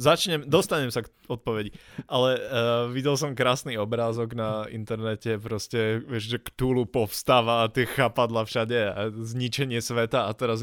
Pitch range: 110-130 Hz